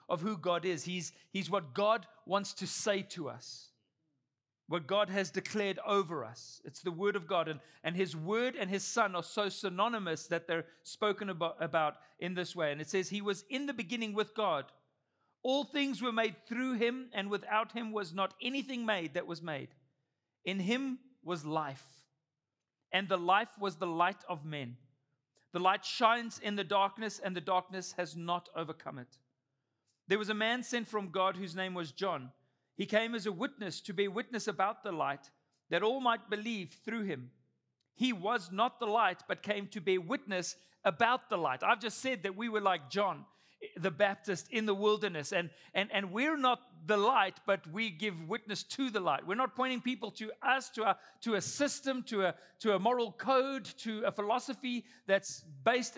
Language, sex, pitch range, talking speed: English, male, 170-225 Hz, 195 wpm